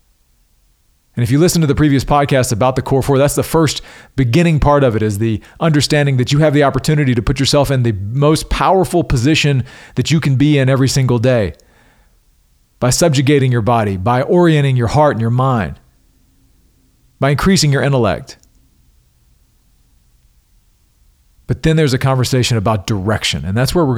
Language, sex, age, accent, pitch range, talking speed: English, male, 40-59, American, 100-145 Hz, 175 wpm